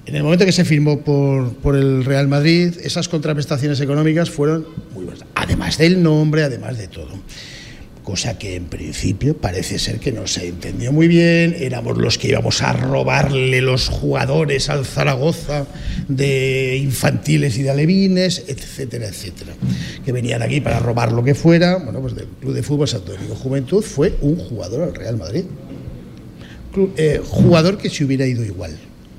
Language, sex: Spanish, male